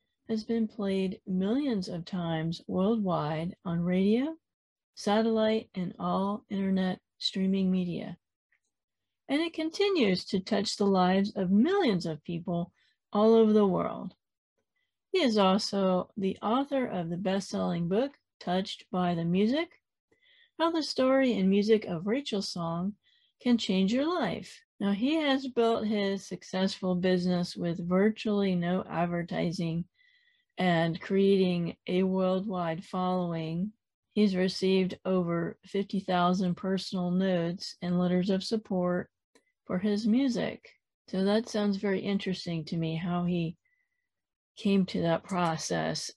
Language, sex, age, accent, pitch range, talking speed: English, female, 40-59, American, 180-215 Hz, 125 wpm